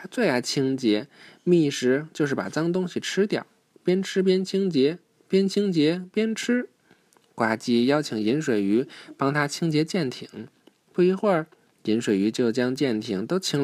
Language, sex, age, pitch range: Chinese, male, 20-39, 120-175 Hz